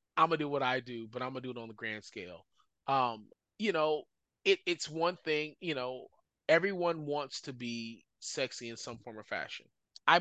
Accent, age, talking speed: American, 20-39, 205 wpm